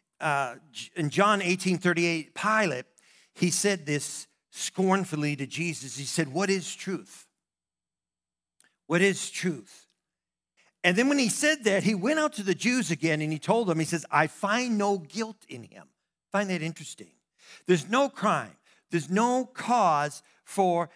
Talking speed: 160 wpm